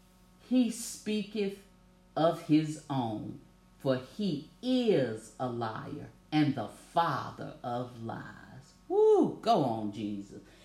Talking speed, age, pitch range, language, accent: 105 wpm, 50-69, 130-195 Hz, English, American